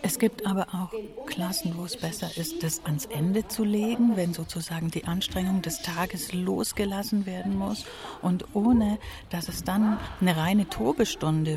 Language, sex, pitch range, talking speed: German, female, 170-210 Hz, 160 wpm